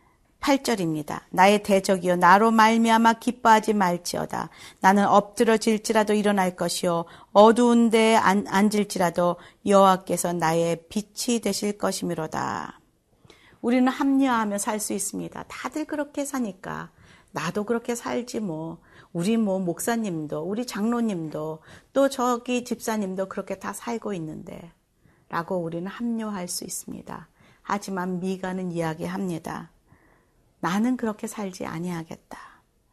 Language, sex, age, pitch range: Korean, female, 40-59, 180-230 Hz